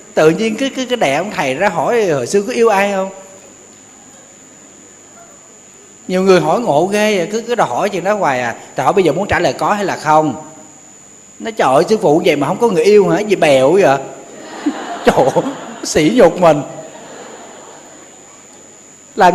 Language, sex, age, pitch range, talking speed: Vietnamese, male, 20-39, 125-175 Hz, 185 wpm